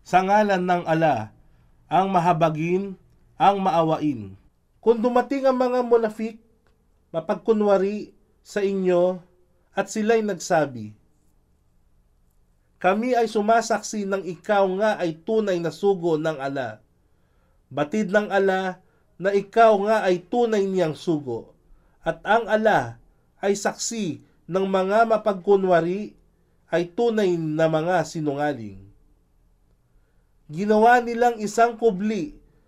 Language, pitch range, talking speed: Filipino, 155-210 Hz, 105 wpm